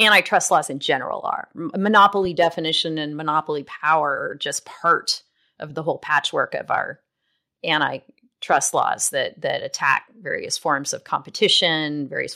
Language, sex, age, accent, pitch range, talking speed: English, female, 30-49, American, 150-205 Hz, 140 wpm